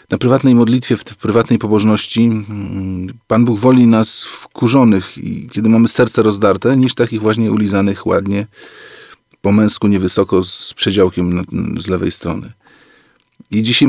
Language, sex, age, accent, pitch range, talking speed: Polish, male, 40-59, native, 100-120 Hz, 130 wpm